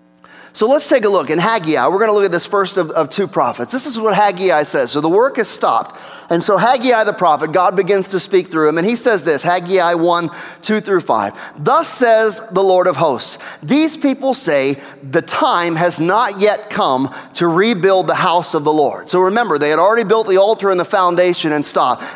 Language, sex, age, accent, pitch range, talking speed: English, male, 30-49, American, 170-230 Hz, 225 wpm